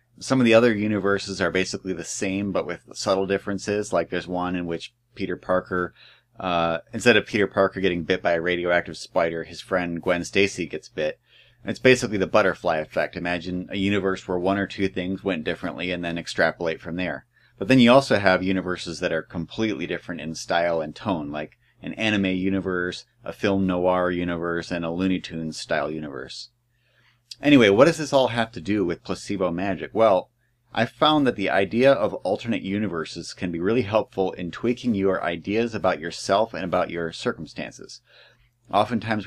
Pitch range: 85-110 Hz